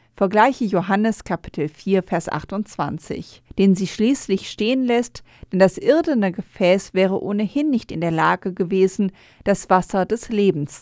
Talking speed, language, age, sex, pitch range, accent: 145 wpm, German, 40-59, female, 180-230 Hz, German